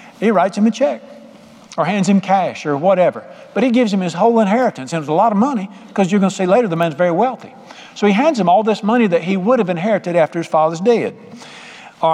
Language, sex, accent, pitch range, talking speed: English, male, American, 165-225 Hz, 255 wpm